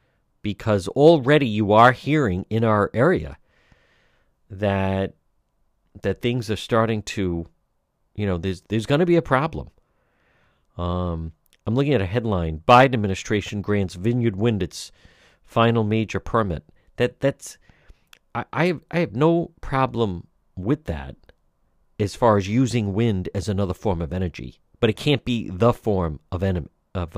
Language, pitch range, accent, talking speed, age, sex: English, 95-125 Hz, American, 150 wpm, 50-69, male